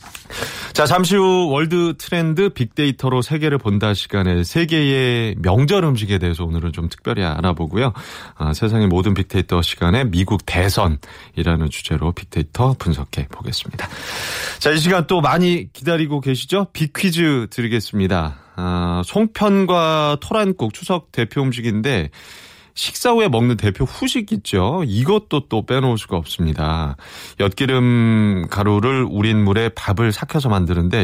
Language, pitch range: Korean, 90-135 Hz